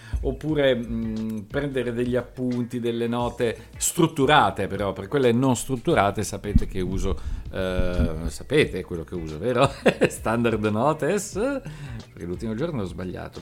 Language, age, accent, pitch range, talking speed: Italian, 50-69, native, 95-135 Hz, 130 wpm